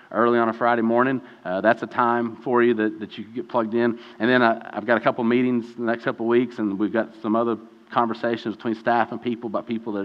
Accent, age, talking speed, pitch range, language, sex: American, 40-59, 270 wpm, 105-120 Hz, English, male